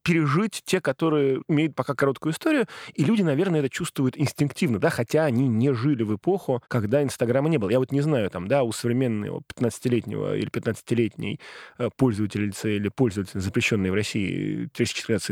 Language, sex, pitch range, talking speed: Russian, male, 115-150 Hz, 170 wpm